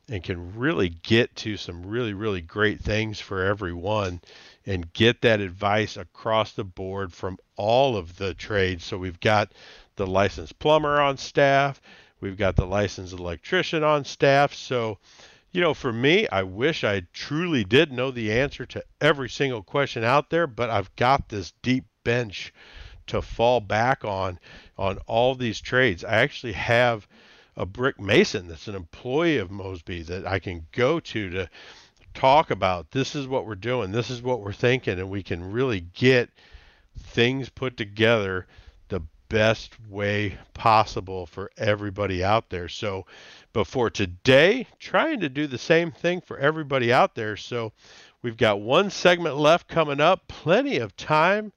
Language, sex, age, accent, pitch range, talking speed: English, male, 50-69, American, 95-125 Hz, 165 wpm